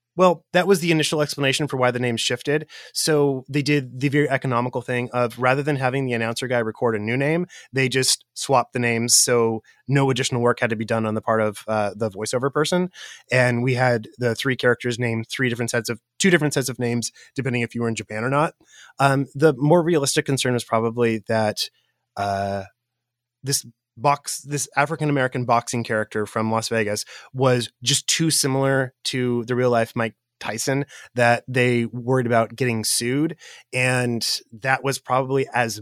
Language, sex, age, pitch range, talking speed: English, male, 20-39, 115-135 Hz, 190 wpm